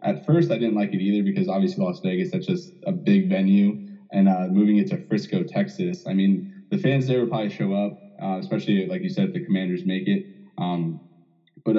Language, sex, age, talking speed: English, male, 20-39, 225 wpm